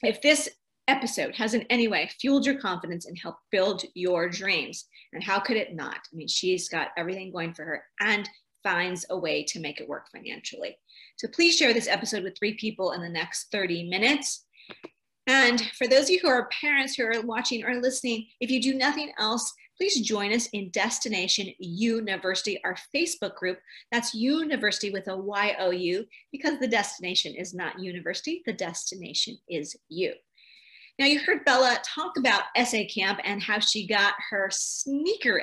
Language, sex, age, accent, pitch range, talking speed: English, female, 40-59, American, 185-255 Hz, 180 wpm